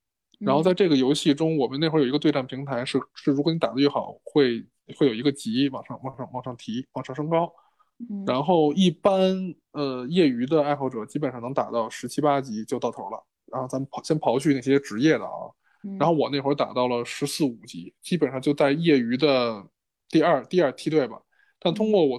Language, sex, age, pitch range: Chinese, male, 20-39, 130-160 Hz